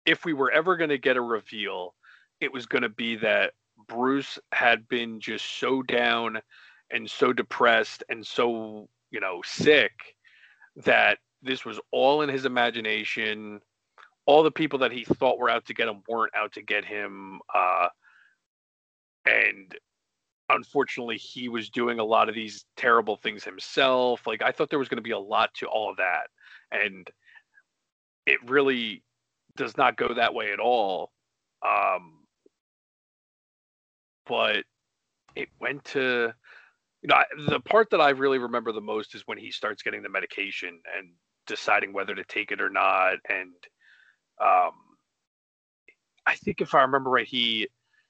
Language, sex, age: English, male, 40-59